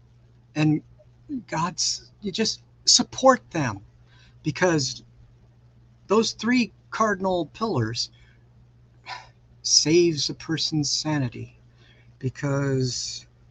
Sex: male